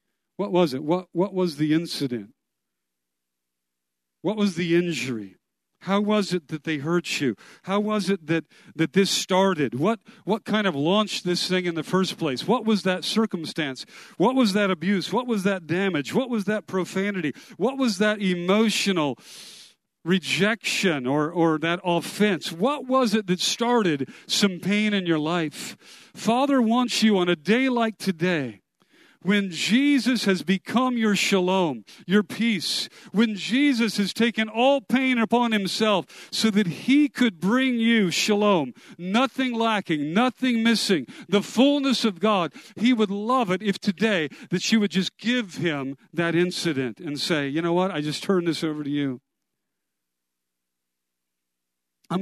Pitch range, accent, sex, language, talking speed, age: 165-220 Hz, American, male, English, 160 wpm, 50-69